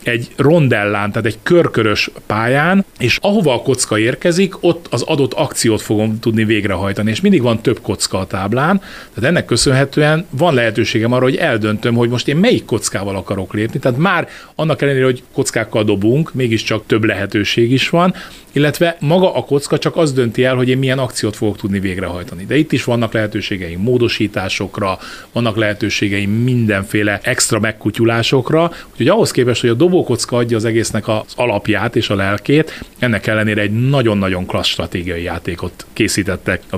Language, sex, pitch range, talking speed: Hungarian, male, 105-135 Hz, 165 wpm